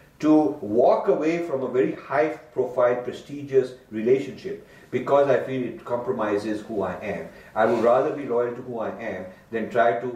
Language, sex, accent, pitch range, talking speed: English, male, Indian, 110-135 Hz, 175 wpm